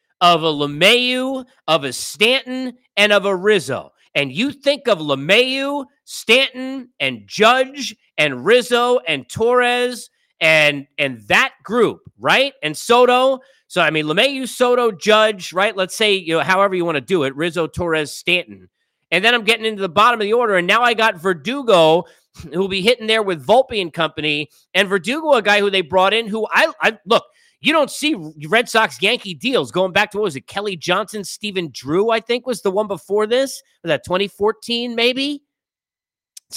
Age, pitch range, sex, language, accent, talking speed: 40-59, 175-245 Hz, male, English, American, 185 wpm